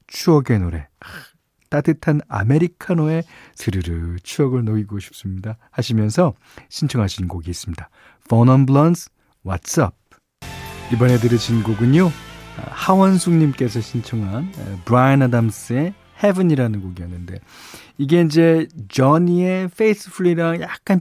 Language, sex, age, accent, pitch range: Korean, male, 40-59, native, 110-160 Hz